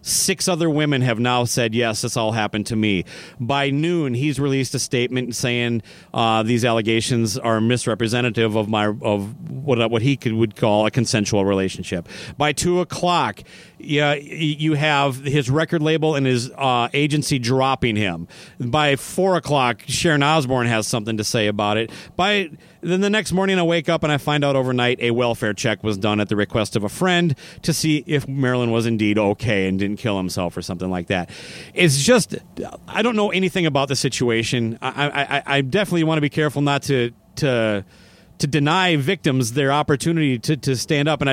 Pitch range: 115-170 Hz